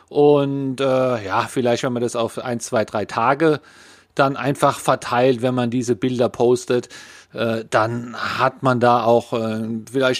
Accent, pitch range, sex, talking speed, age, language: German, 115-145 Hz, male, 165 wpm, 40-59, German